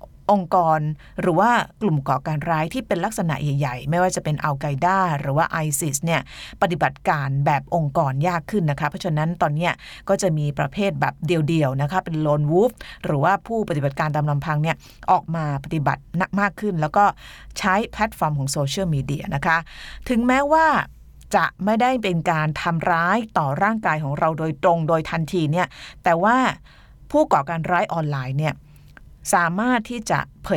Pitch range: 150-195 Hz